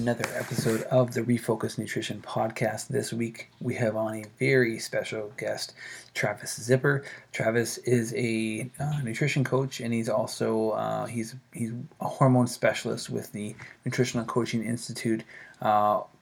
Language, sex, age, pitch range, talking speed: English, male, 20-39, 110-125 Hz, 145 wpm